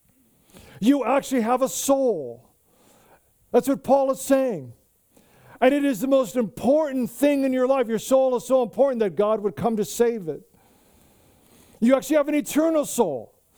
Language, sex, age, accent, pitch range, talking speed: English, male, 50-69, American, 220-270 Hz, 170 wpm